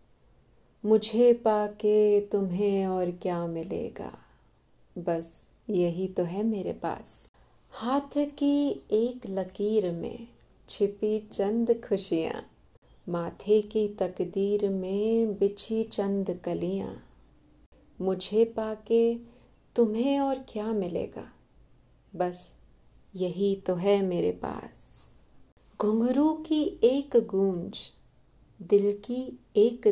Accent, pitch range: native, 180-225 Hz